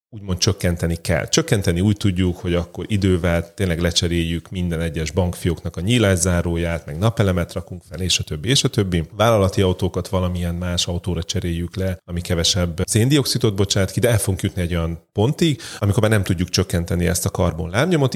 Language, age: Hungarian, 30-49